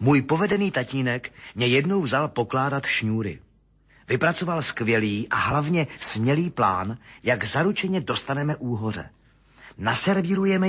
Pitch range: 115-160 Hz